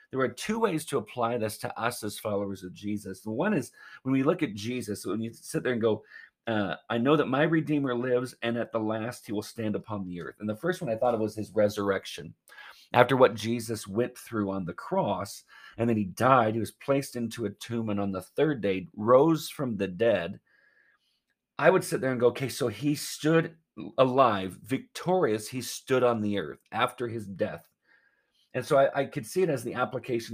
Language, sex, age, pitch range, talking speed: English, male, 40-59, 105-135 Hz, 220 wpm